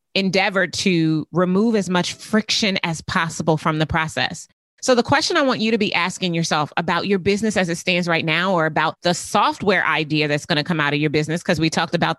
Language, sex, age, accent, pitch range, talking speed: English, female, 30-49, American, 160-210 Hz, 225 wpm